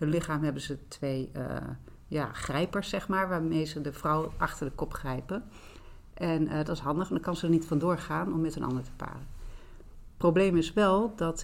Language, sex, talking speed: Dutch, female, 220 wpm